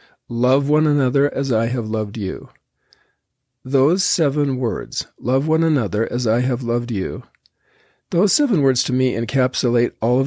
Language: English